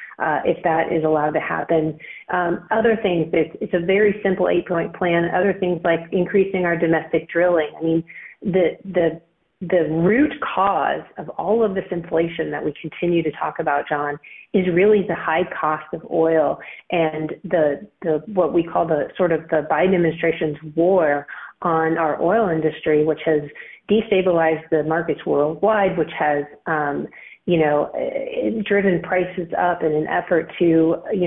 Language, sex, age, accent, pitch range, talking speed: English, female, 40-59, American, 155-180 Hz, 165 wpm